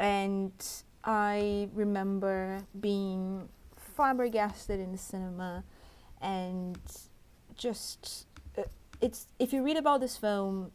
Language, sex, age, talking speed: English, female, 30-49, 100 wpm